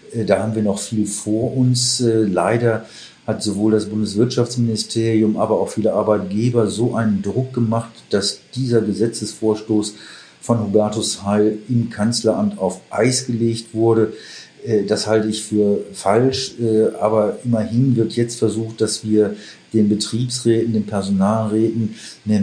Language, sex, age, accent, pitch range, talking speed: German, male, 50-69, German, 105-115 Hz, 130 wpm